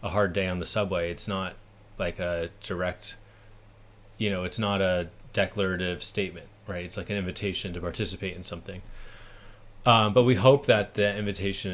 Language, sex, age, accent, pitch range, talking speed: English, male, 30-49, American, 90-105 Hz, 175 wpm